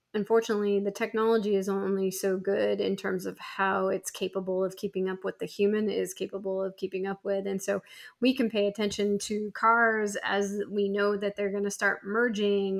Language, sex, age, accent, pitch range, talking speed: English, female, 20-39, American, 195-210 Hz, 195 wpm